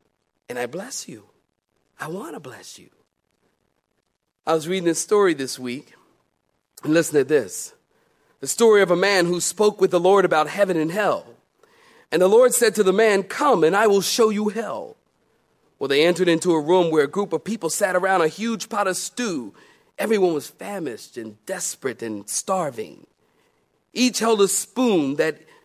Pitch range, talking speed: 175-235 Hz, 185 wpm